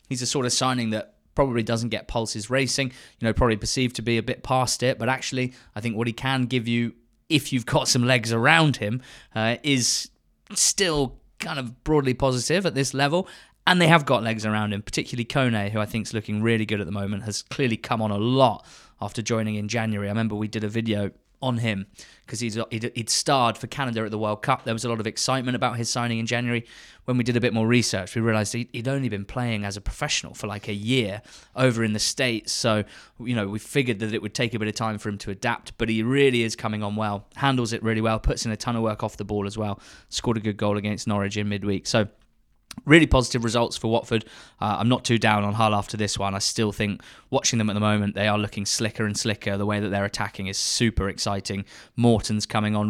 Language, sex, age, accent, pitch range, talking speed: English, male, 20-39, British, 105-125 Hz, 245 wpm